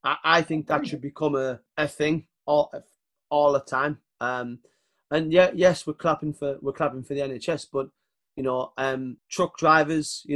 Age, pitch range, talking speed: 30-49, 130-155 Hz, 180 wpm